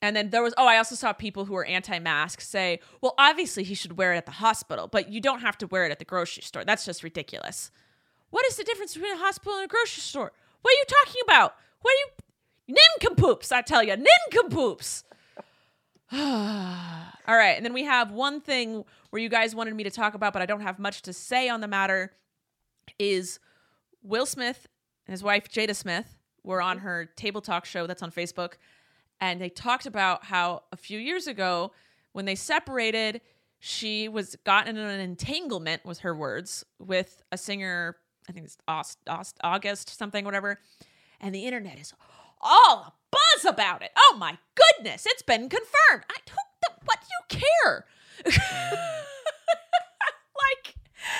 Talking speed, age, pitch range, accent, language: 185 wpm, 30-49, 185-285 Hz, American, English